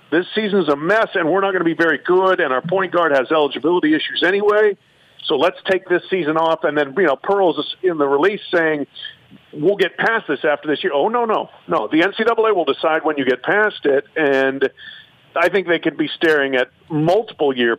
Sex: male